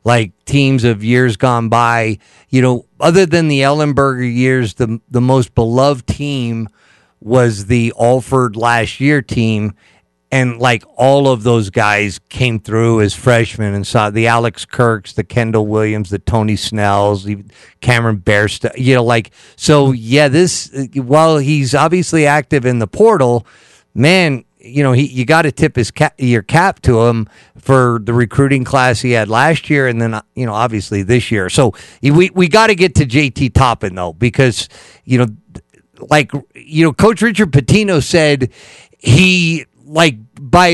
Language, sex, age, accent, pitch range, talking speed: English, male, 50-69, American, 115-150 Hz, 165 wpm